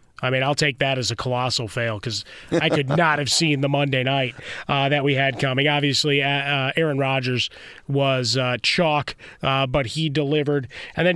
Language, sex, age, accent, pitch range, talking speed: English, male, 30-49, American, 140-175 Hz, 195 wpm